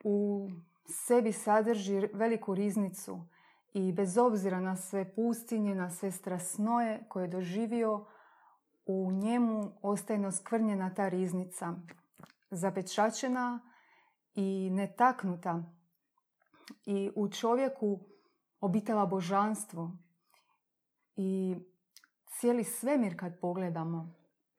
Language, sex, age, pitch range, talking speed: Croatian, female, 30-49, 185-220 Hz, 90 wpm